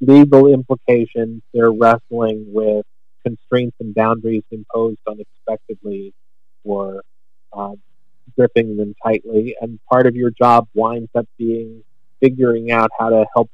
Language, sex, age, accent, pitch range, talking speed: English, male, 40-59, American, 115-140 Hz, 120 wpm